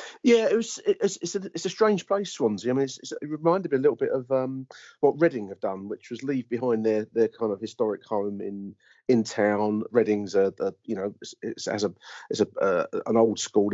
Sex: male